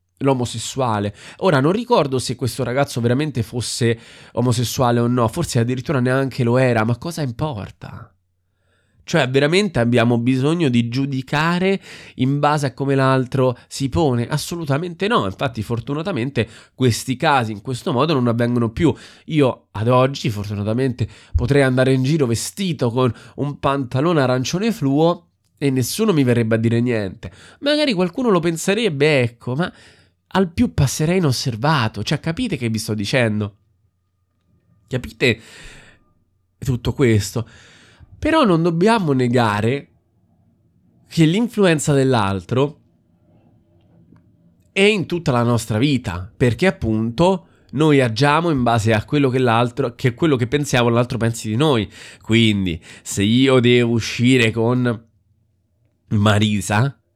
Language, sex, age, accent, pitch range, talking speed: Italian, male, 20-39, native, 110-145 Hz, 125 wpm